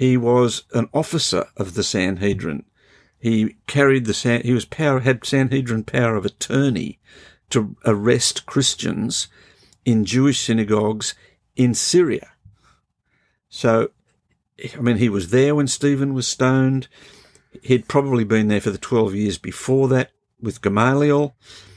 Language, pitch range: English, 105-130 Hz